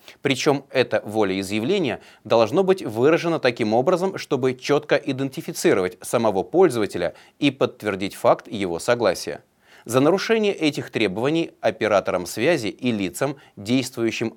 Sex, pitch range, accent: male, 110-155 Hz, native